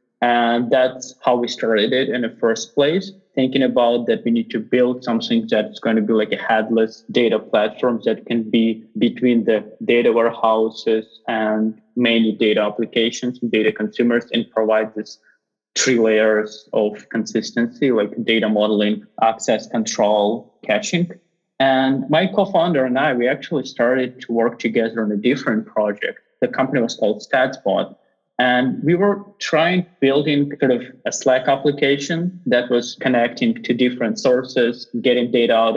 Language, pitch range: English, 110-130 Hz